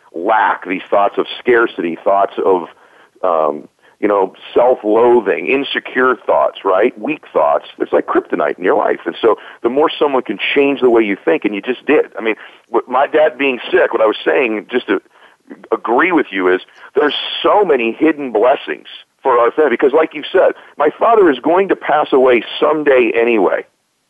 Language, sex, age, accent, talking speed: English, male, 40-59, American, 185 wpm